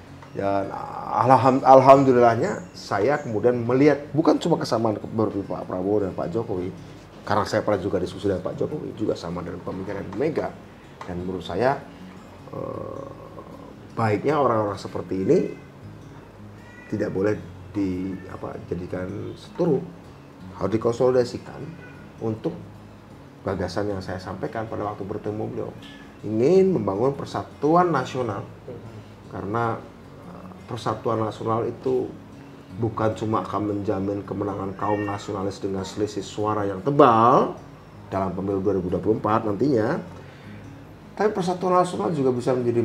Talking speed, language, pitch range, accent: 110 wpm, Indonesian, 95-120 Hz, native